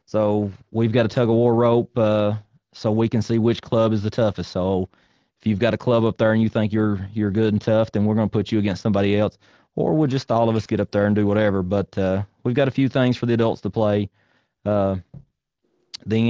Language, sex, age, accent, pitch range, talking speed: English, male, 30-49, American, 95-110 Hz, 245 wpm